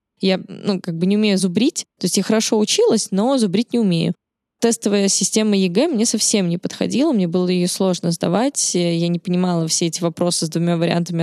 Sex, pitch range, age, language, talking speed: female, 175-210 Hz, 10-29, Russian, 200 wpm